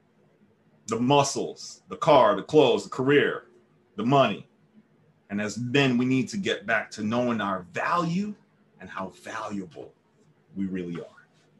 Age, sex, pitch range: 30-49, male, 110-155 Hz